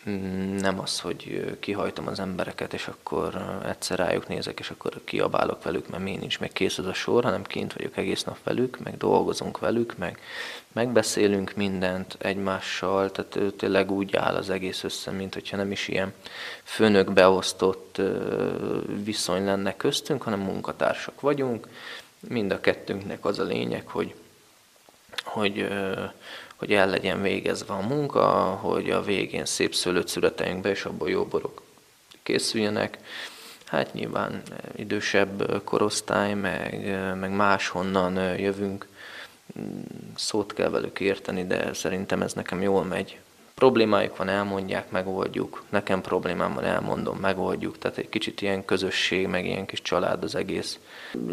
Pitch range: 95-105 Hz